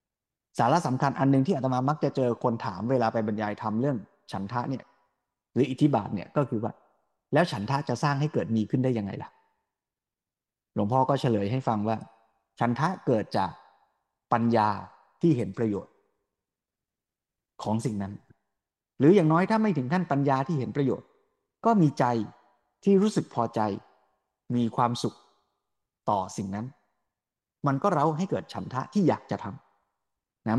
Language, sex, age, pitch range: Thai, male, 20-39, 115-160 Hz